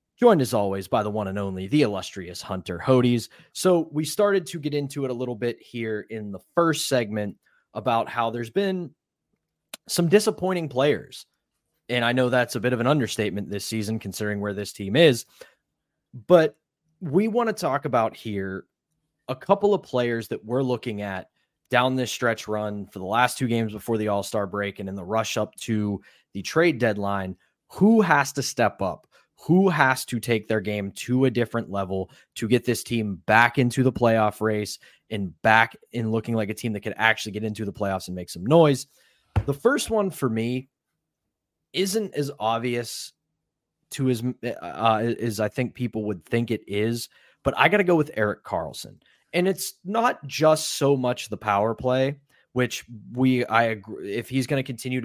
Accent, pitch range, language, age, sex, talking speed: American, 105-140 Hz, English, 20-39, male, 190 wpm